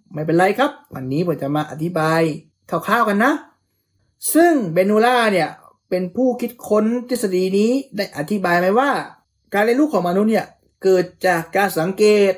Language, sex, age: Thai, male, 20-39